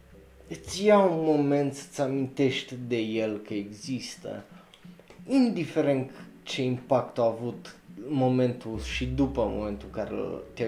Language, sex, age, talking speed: Romanian, male, 20-39, 125 wpm